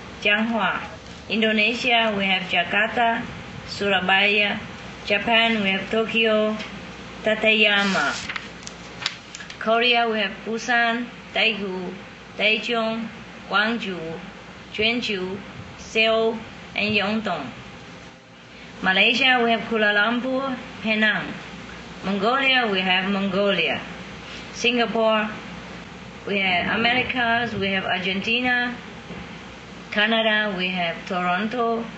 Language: English